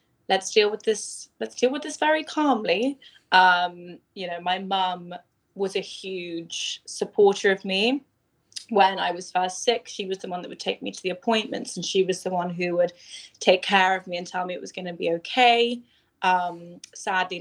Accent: British